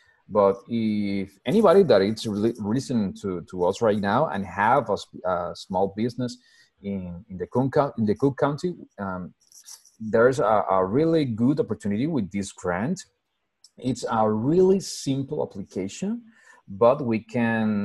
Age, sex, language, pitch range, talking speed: 30-49, male, English, 105-150 Hz, 150 wpm